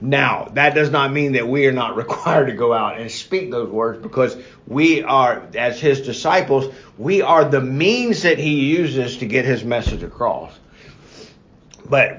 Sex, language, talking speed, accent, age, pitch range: male, English, 175 wpm, American, 50-69, 130-170 Hz